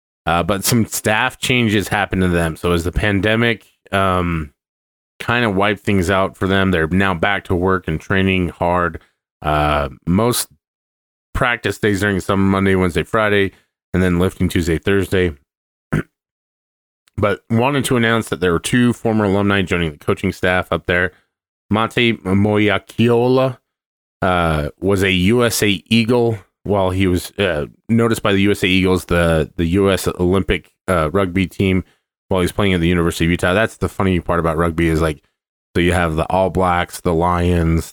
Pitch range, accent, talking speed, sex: 80-100 Hz, American, 165 wpm, male